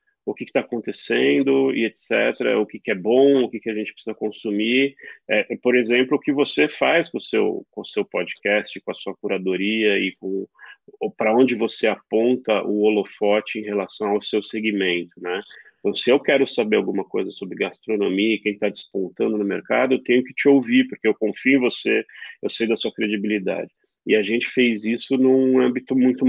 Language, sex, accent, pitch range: Portuguese, male, Brazilian, 110-135 Hz